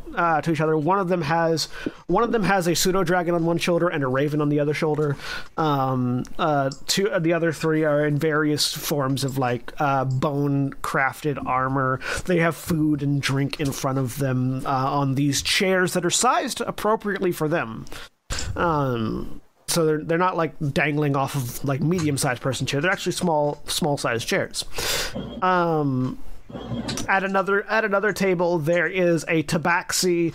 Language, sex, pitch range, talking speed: English, male, 145-175 Hz, 180 wpm